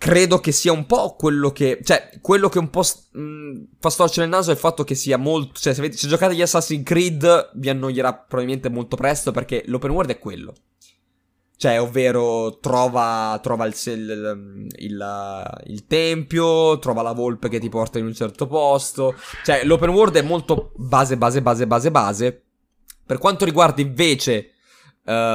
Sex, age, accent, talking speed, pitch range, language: male, 20-39, native, 180 wpm, 115-155 Hz, Italian